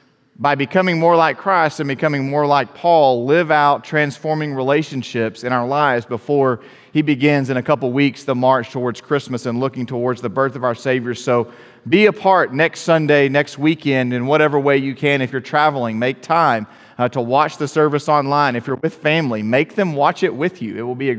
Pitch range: 125-150 Hz